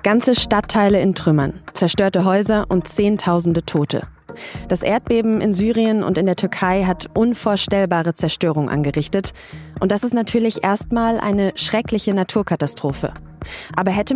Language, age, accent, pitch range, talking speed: German, 20-39, German, 170-215 Hz, 130 wpm